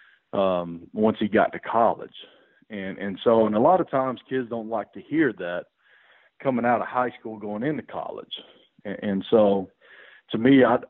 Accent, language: American, English